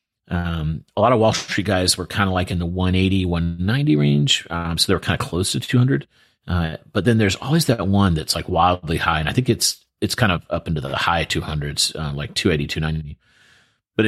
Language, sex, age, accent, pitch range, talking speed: English, male, 40-59, American, 80-100 Hz, 225 wpm